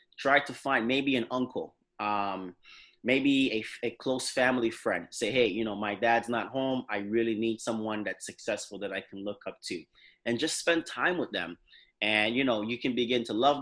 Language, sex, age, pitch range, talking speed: English, male, 30-49, 105-135 Hz, 205 wpm